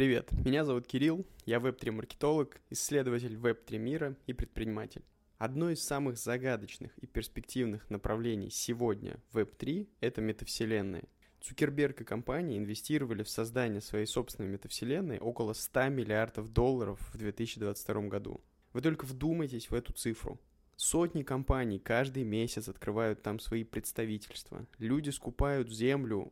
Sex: male